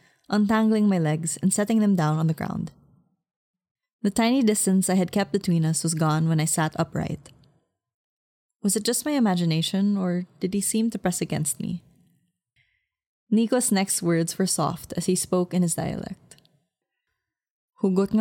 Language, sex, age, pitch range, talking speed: English, female, 20-39, 160-195 Hz, 160 wpm